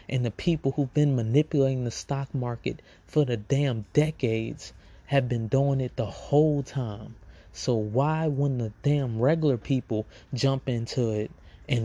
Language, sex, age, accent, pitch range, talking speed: English, male, 20-39, American, 110-130 Hz, 155 wpm